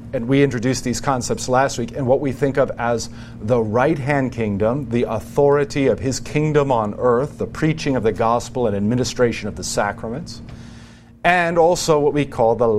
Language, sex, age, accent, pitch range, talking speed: English, male, 40-59, American, 115-155 Hz, 190 wpm